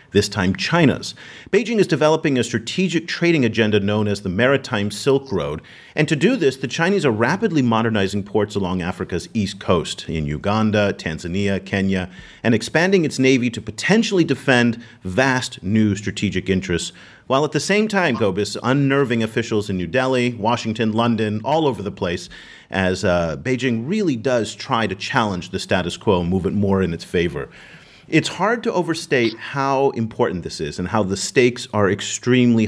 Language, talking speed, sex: English, 175 wpm, male